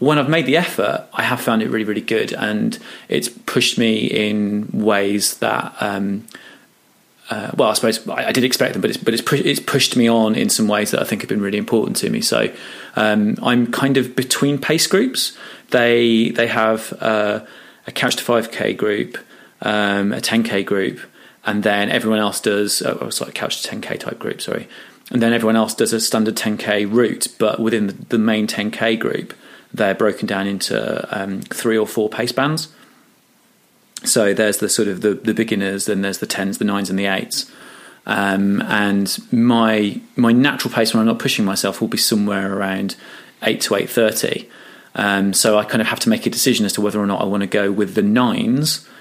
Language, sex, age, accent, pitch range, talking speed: English, male, 30-49, British, 105-115 Hz, 205 wpm